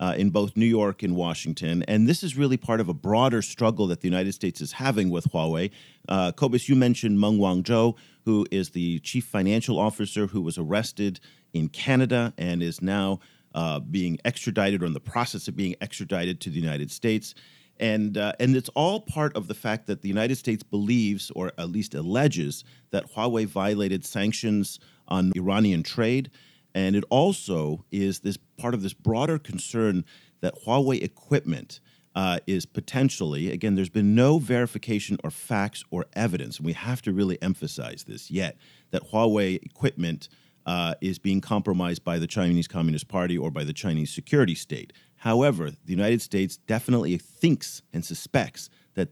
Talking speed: 175 wpm